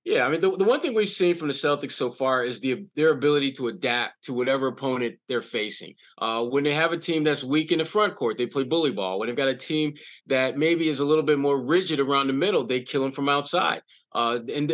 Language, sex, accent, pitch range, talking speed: English, male, American, 130-170 Hz, 260 wpm